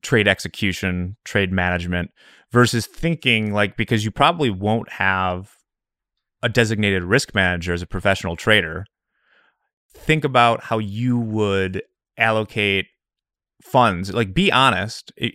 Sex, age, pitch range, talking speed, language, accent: male, 30-49, 95-120 Hz, 115 wpm, English, American